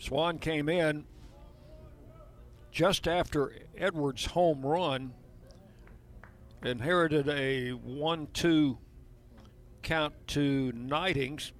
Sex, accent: male, American